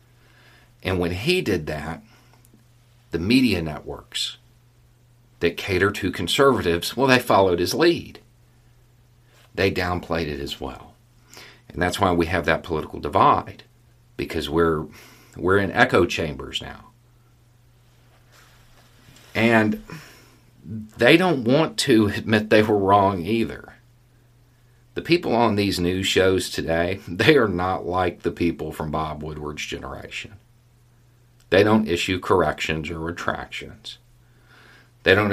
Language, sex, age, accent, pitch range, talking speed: English, male, 50-69, American, 95-120 Hz, 120 wpm